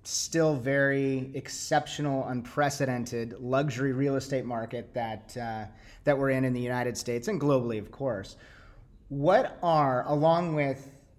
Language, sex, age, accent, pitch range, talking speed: English, male, 30-49, American, 115-140 Hz, 135 wpm